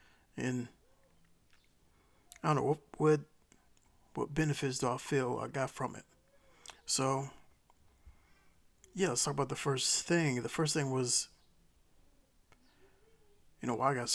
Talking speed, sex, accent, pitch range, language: 135 wpm, male, American, 120-145 Hz, English